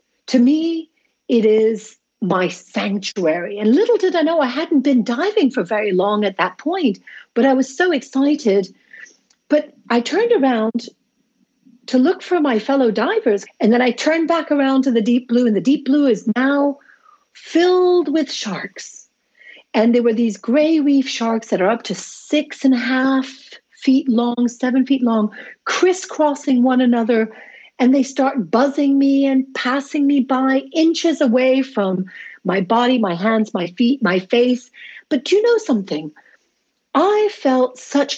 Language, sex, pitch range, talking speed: English, female, 220-280 Hz, 165 wpm